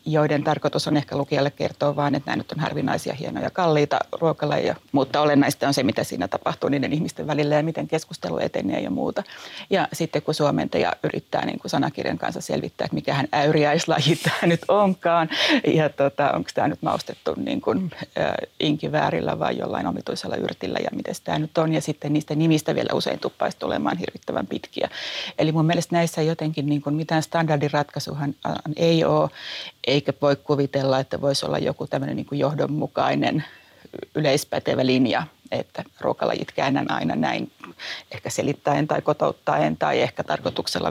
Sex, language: female, Finnish